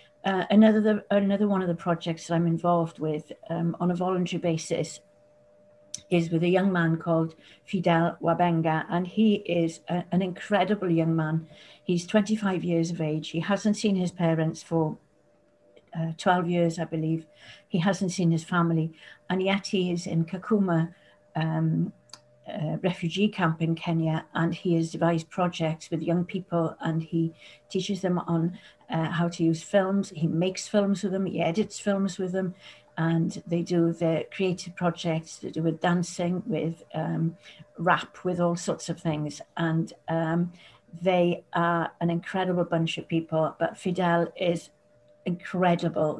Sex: female